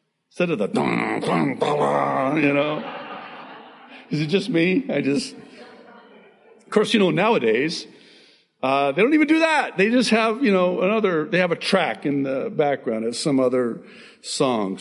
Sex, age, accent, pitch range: male, 60-79, American, 140-220 Hz